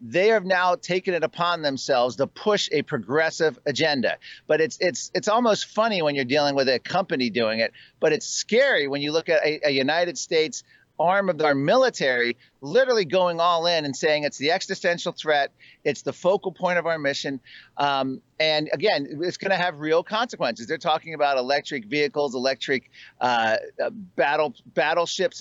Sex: male